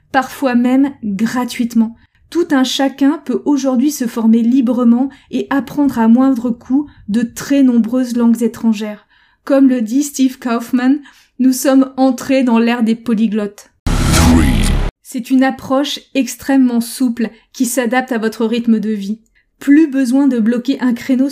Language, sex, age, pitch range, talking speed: French, female, 20-39, 230-270 Hz, 145 wpm